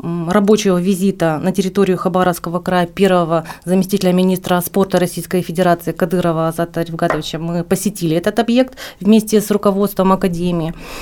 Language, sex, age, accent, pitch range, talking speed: Russian, female, 30-49, native, 175-215 Hz, 125 wpm